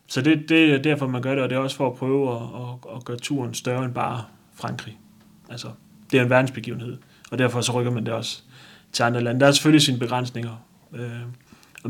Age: 30-49